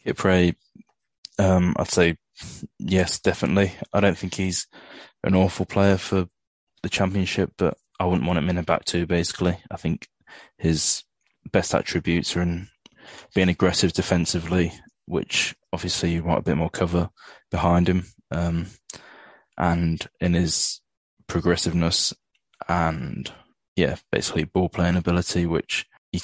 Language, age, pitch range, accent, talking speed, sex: English, 20-39, 85-95 Hz, British, 135 wpm, male